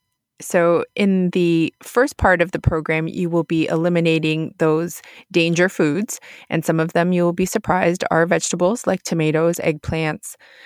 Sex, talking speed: female, 160 wpm